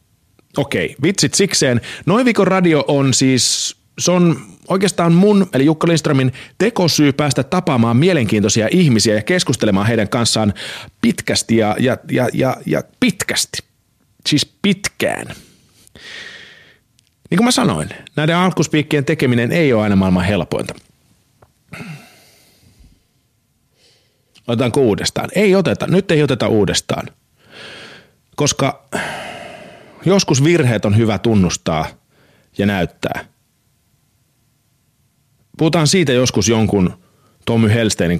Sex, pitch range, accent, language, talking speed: male, 110-155 Hz, native, Finnish, 105 wpm